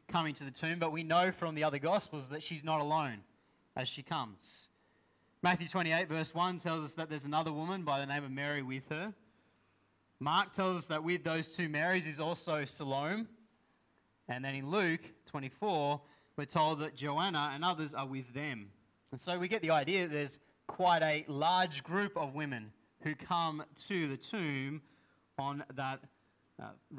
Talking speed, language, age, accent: 180 wpm, English, 20-39, Australian